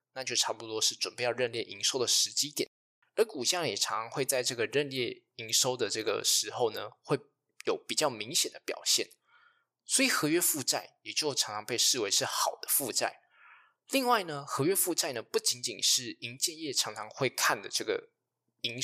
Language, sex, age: Chinese, male, 20-39